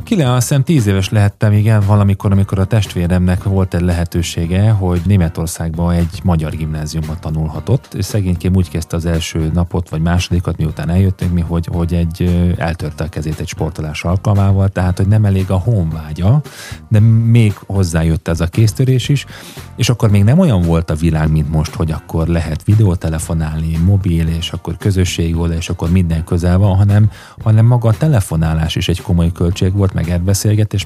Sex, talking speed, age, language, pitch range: male, 175 wpm, 30-49, Hungarian, 85-105 Hz